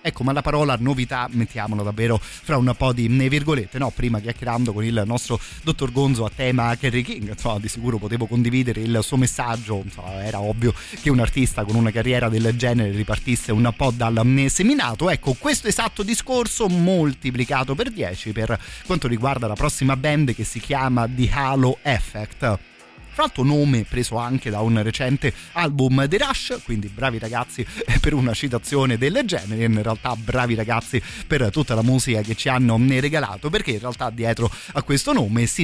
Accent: native